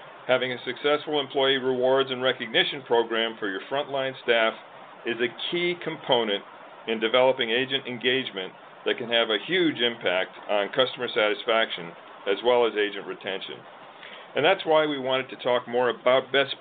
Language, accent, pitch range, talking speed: English, American, 115-140 Hz, 160 wpm